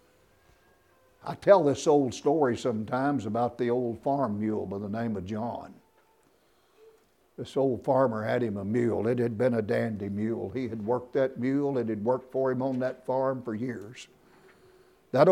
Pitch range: 110-135 Hz